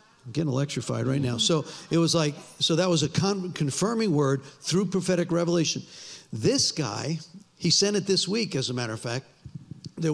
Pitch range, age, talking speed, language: 135-170 Hz, 50-69, 180 wpm, English